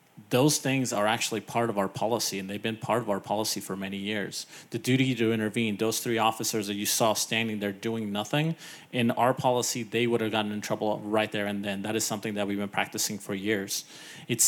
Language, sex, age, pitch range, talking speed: English, male, 30-49, 105-125 Hz, 230 wpm